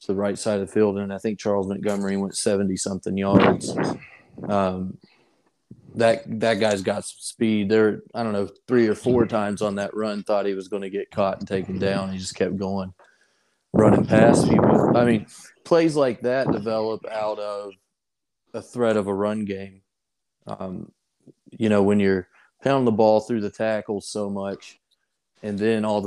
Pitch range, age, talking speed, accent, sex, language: 100-110 Hz, 30-49, 185 wpm, American, male, English